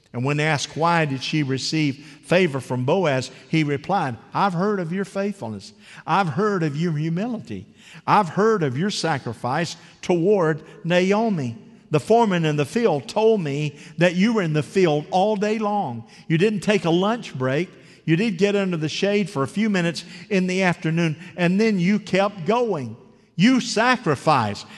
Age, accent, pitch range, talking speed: 50-69, American, 120-180 Hz, 170 wpm